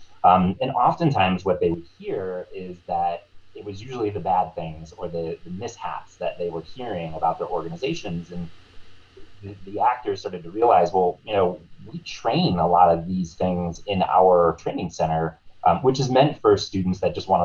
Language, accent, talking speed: English, American, 195 wpm